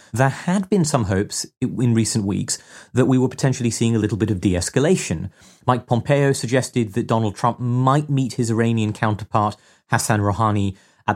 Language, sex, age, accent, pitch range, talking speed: English, male, 30-49, British, 105-140 Hz, 170 wpm